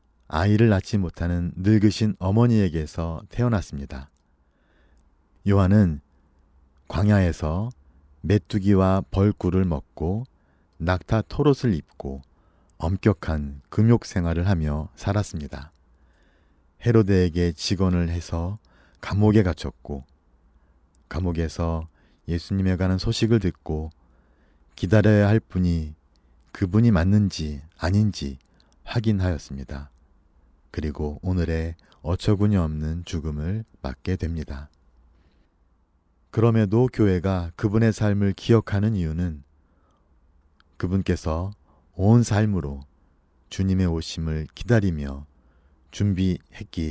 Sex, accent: male, native